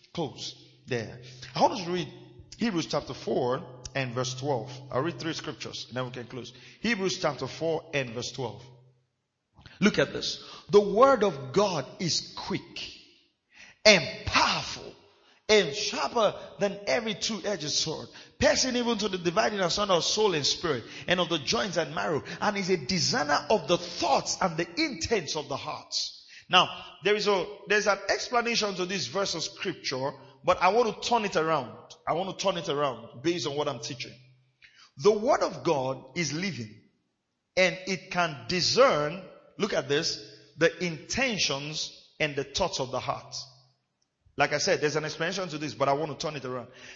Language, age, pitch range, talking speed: English, 40-59, 140-200 Hz, 175 wpm